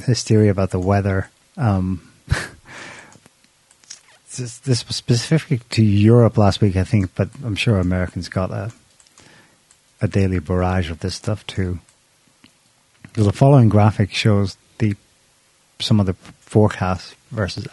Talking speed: 130 wpm